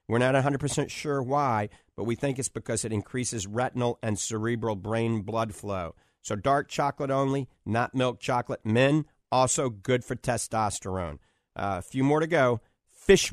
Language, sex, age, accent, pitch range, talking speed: English, male, 50-69, American, 110-135 Hz, 165 wpm